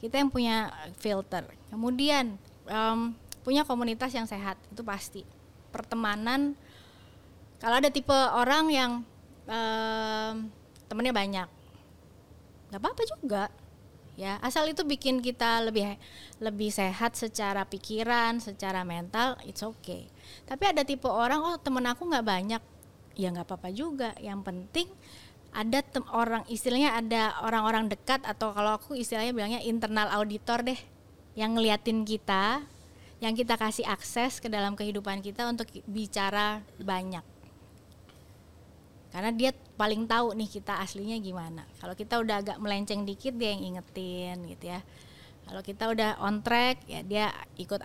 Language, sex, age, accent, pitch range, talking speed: Indonesian, female, 20-39, native, 190-235 Hz, 135 wpm